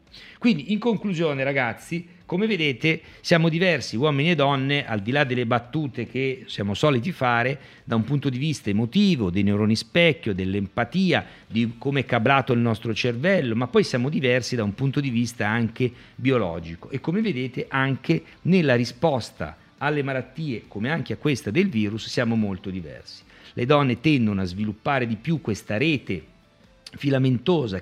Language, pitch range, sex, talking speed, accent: Italian, 110-155 Hz, male, 160 wpm, native